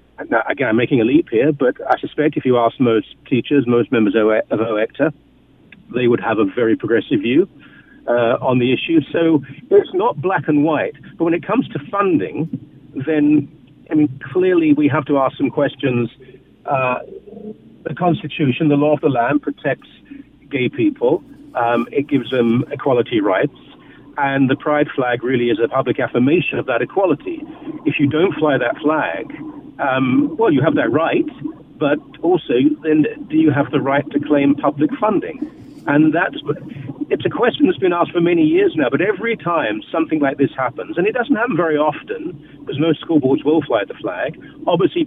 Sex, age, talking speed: male, 50-69, 185 wpm